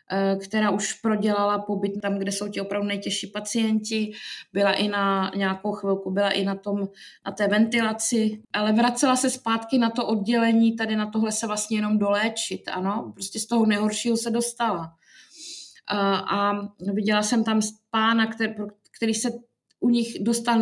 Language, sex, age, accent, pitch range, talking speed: Czech, female, 20-39, native, 200-225 Hz, 155 wpm